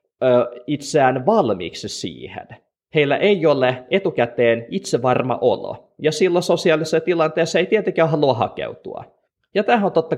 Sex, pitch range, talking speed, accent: male, 115-190 Hz, 125 wpm, native